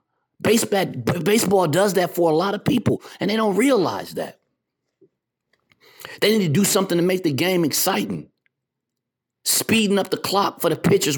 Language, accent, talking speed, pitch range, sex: English, American, 160 wpm, 145-195 Hz, male